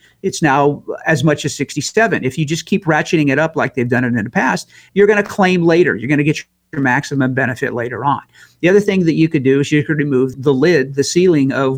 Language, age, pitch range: English, 50-69, 135-175 Hz